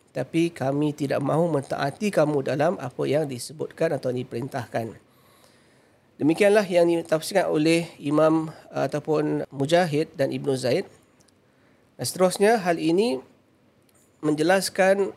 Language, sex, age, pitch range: Malay, male, 40-59, 140-170 Hz